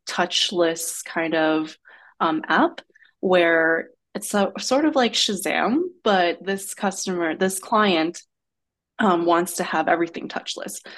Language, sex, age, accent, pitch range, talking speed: English, female, 20-39, American, 165-200 Hz, 120 wpm